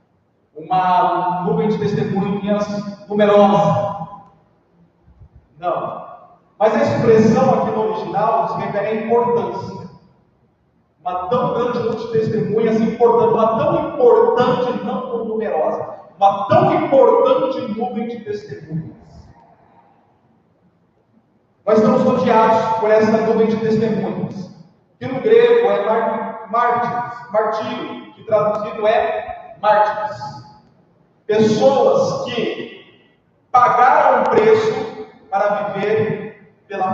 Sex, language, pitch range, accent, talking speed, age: male, Portuguese, 185-230 Hz, Brazilian, 100 wpm, 40-59